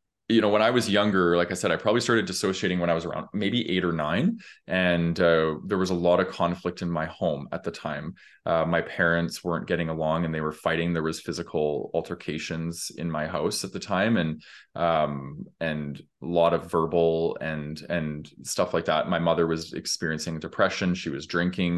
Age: 20-39